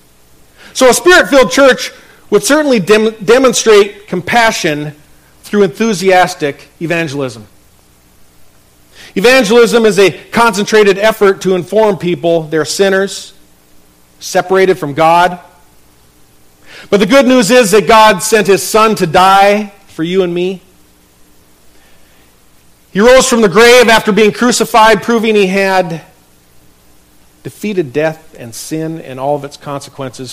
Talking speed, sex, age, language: 120 wpm, male, 40-59, English